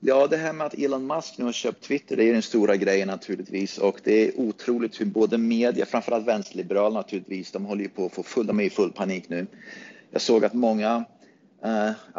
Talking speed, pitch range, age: 225 wpm, 100-125 Hz, 30-49